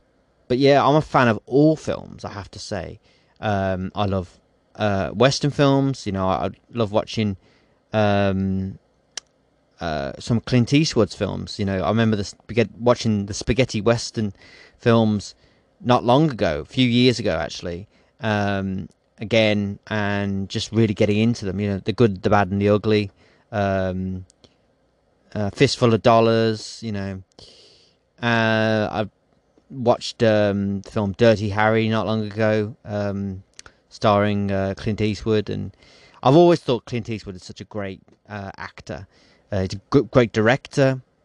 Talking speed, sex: 150 wpm, male